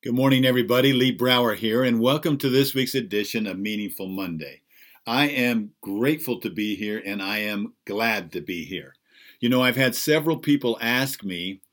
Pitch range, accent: 105-135 Hz, American